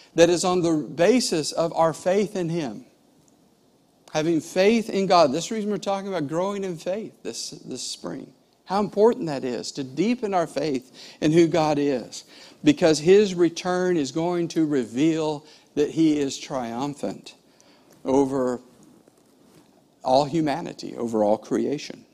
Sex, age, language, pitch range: male, 50-69, English, 130-180 Hz